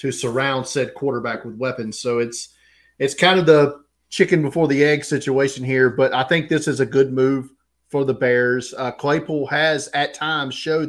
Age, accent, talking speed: 40-59, American, 195 wpm